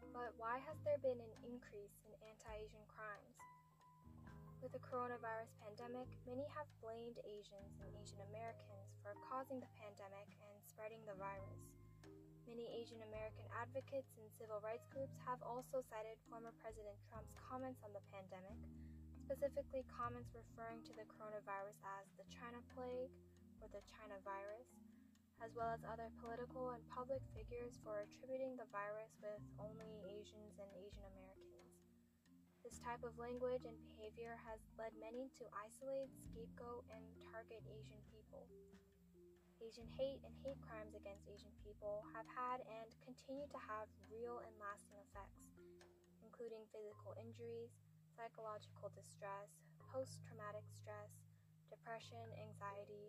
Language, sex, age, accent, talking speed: English, female, 10-29, American, 140 wpm